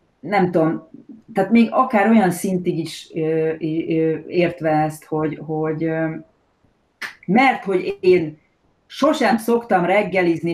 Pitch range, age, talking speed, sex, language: 155-215 Hz, 30-49, 100 wpm, female, Hungarian